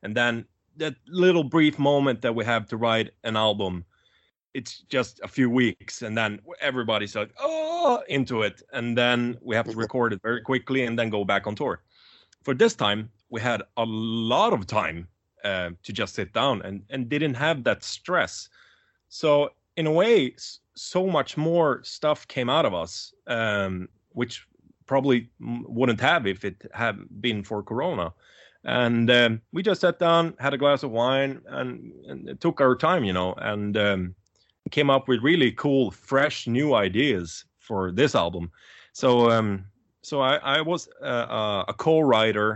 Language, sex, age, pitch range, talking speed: English, male, 30-49, 100-135 Hz, 175 wpm